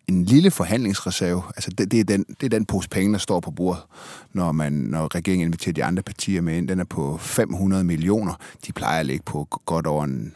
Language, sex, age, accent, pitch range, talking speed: Danish, male, 30-49, native, 85-110 Hz, 230 wpm